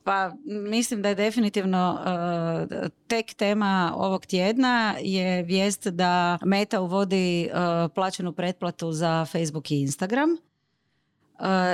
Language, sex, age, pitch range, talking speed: Croatian, female, 30-49, 165-210 Hz, 120 wpm